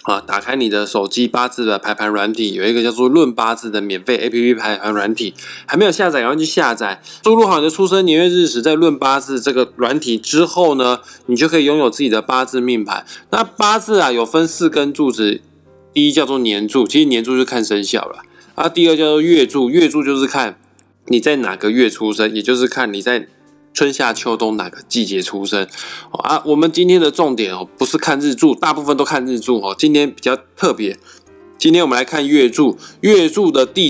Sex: male